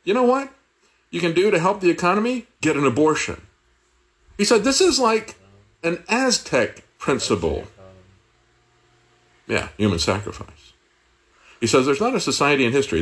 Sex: male